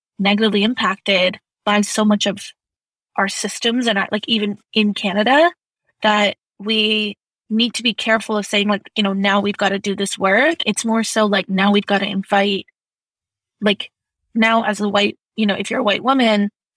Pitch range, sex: 200-230 Hz, female